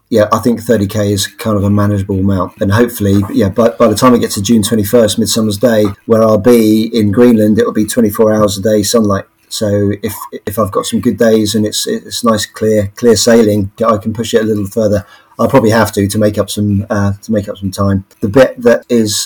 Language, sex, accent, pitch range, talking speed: English, male, British, 100-115 Hz, 240 wpm